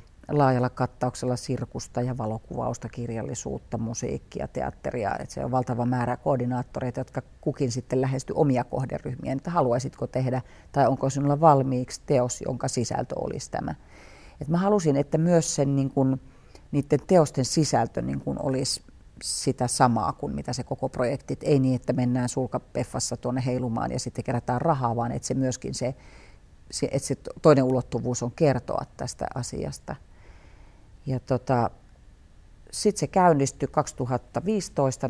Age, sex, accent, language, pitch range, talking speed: 40-59, female, native, Finnish, 120-140 Hz, 125 wpm